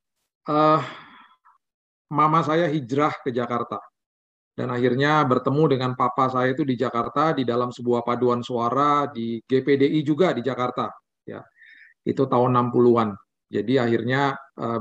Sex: male